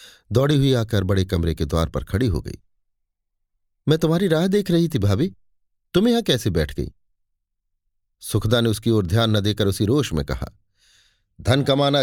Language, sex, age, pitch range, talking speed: Hindi, male, 40-59, 95-135 Hz, 180 wpm